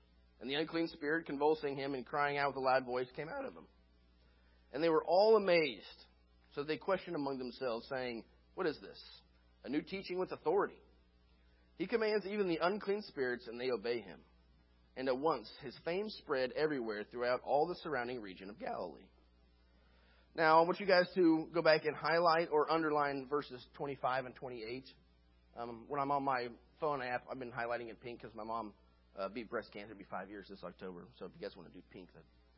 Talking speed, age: 200 wpm, 30-49